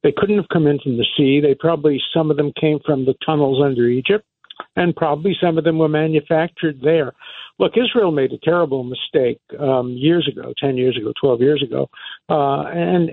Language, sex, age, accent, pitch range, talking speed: English, male, 60-79, American, 140-180 Hz, 200 wpm